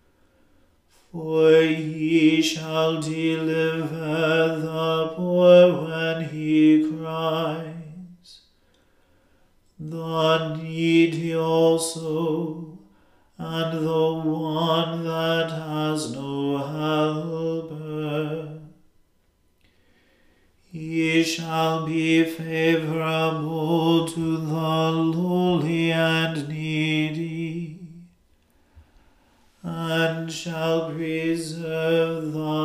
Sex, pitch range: male, 155-165 Hz